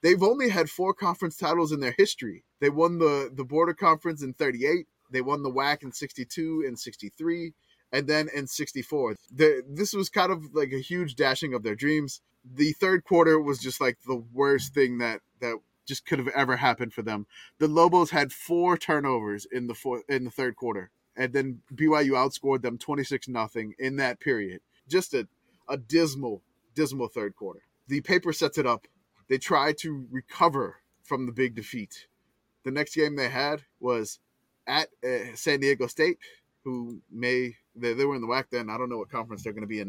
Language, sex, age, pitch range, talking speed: English, male, 20-39, 125-160 Hz, 195 wpm